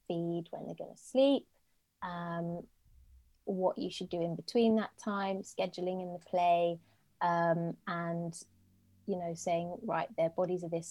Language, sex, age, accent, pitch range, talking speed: English, female, 20-39, British, 165-195 Hz, 160 wpm